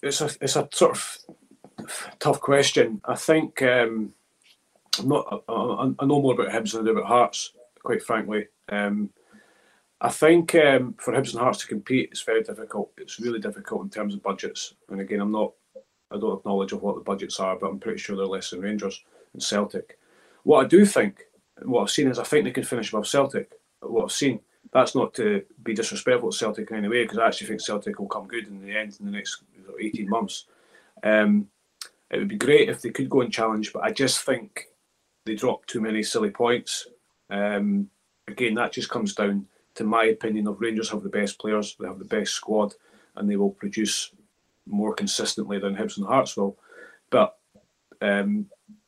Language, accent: English, British